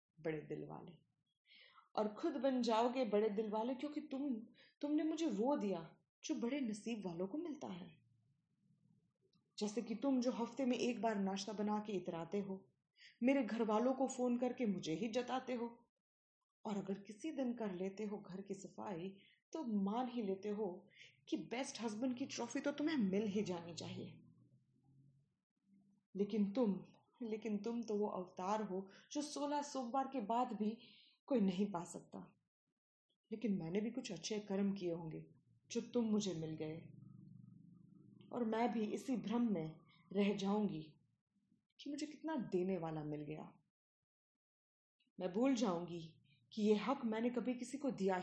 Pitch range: 185-245 Hz